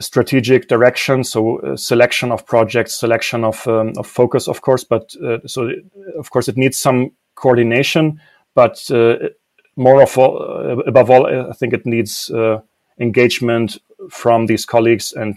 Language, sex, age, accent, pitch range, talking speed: English, male, 30-49, German, 115-130 Hz, 150 wpm